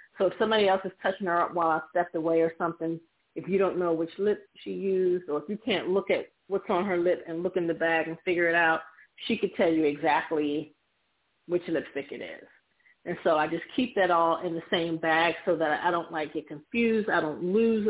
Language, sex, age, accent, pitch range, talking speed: English, female, 40-59, American, 160-195 Hz, 240 wpm